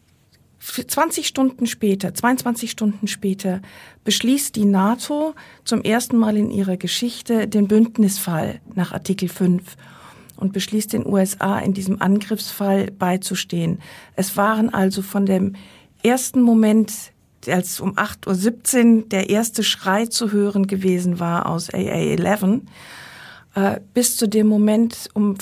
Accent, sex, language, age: German, female, German, 50-69